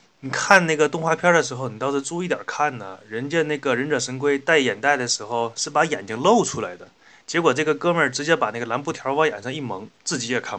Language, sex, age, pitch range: Chinese, male, 20-39, 115-145 Hz